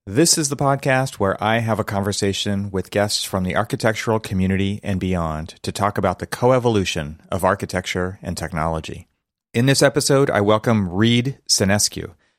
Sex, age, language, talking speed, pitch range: male, 30-49, English, 160 wpm, 95-110 Hz